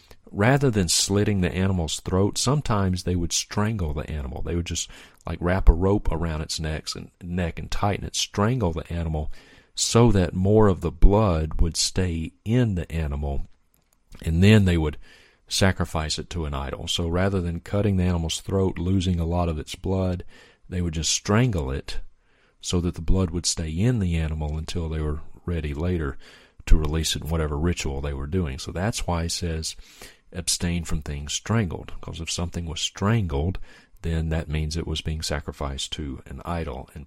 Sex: male